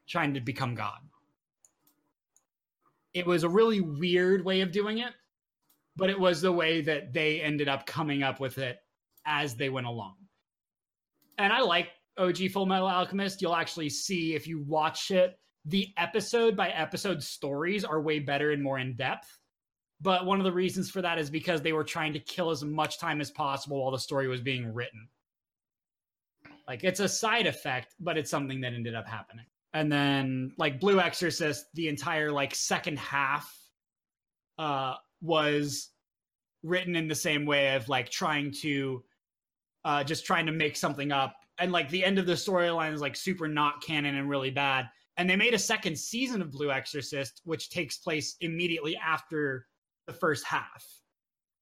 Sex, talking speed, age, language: male, 180 wpm, 30-49, English